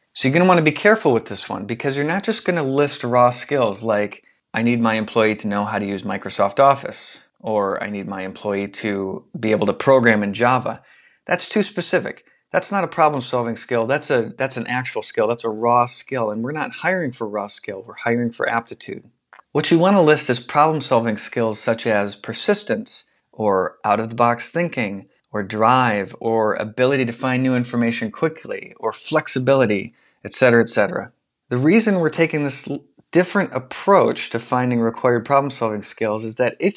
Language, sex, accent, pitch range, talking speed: English, male, American, 115-145 Hz, 185 wpm